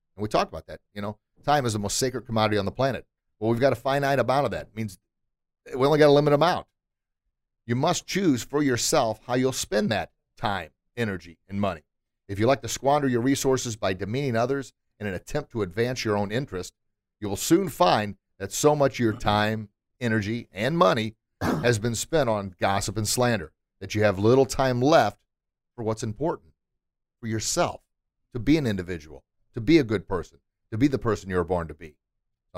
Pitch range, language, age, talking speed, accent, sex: 95-120 Hz, English, 40-59, 205 wpm, American, male